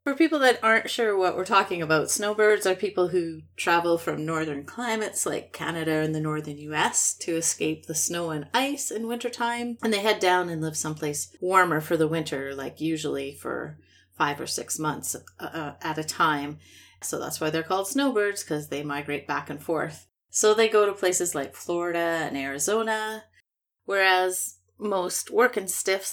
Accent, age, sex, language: American, 30-49, female, English